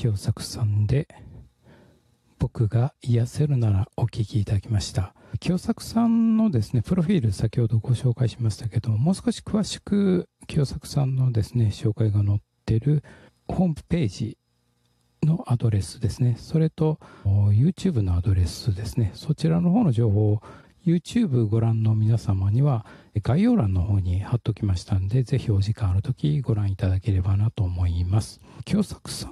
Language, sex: Japanese, male